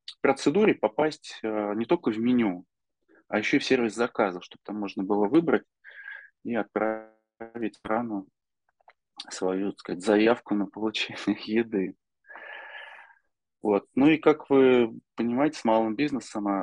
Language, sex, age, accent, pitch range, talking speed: Russian, male, 20-39, native, 105-125 Hz, 135 wpm